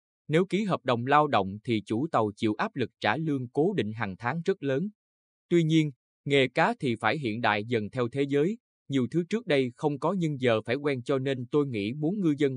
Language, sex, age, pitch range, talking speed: Vietnamese, male, 20-39, 110-155 Hz, 235 wpm